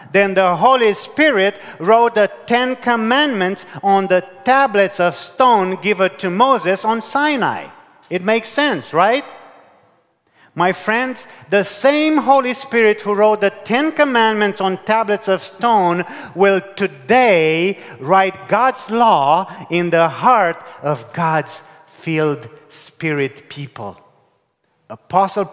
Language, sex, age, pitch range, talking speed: English, male, 40-59, 150-205 Hz, 120 wpm